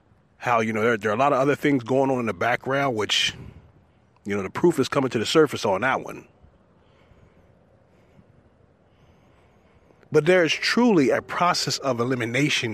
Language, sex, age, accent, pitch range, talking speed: English, male, 30-49, American, 130-175 Hz, 170 wpm